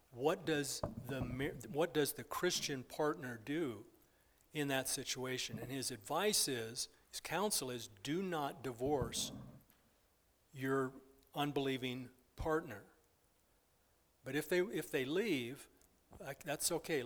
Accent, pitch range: American, 130-165 Hz